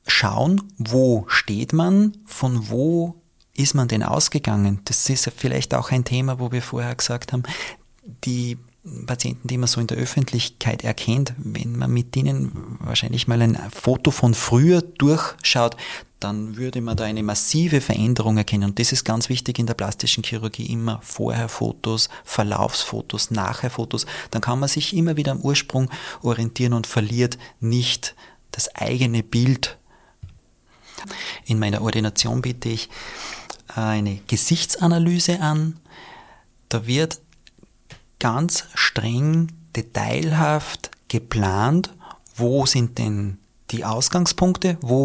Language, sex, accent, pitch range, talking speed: German, male, Austrian, 110-145 Hz, 130 wpm